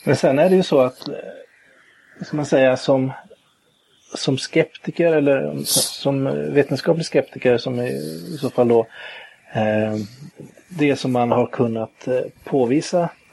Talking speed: 125 wpm